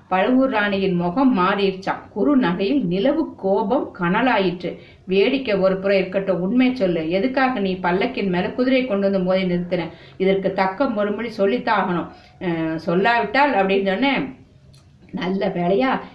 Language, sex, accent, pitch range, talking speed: Tamil, female, native, 185-250 Hz, 115 wpm